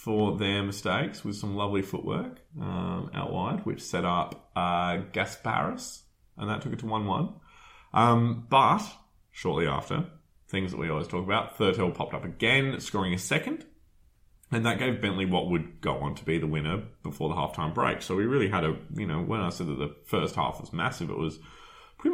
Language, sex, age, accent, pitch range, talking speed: English, male, 20-39, Australian, 90-120 Hz, 200 wpm